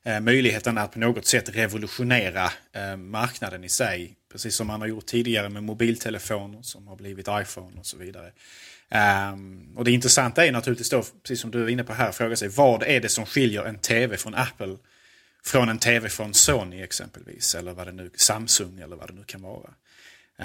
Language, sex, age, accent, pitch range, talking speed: Swedish, male, 30-49, Norwegian, 100-120 Hz, 190 wpm